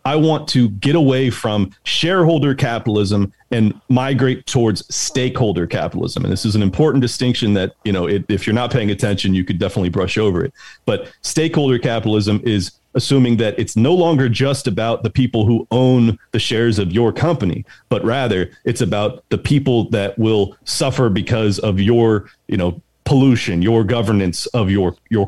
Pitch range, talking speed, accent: 100-130 Hz, 175 wpm, American